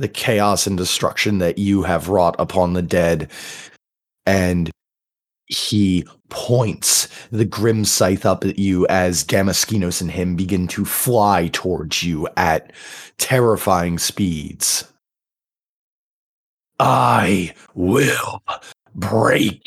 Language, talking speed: English, 105 wpm